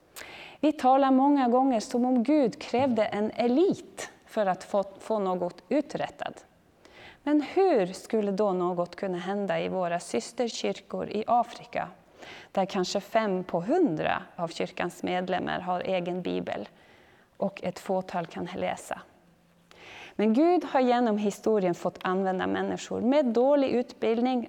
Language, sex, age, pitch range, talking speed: Swedish, female, 30-49, 190-255 Hz, 130 wpm